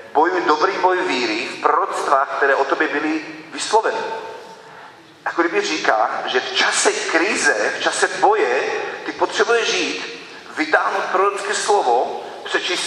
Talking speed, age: 130 wpm, 40-59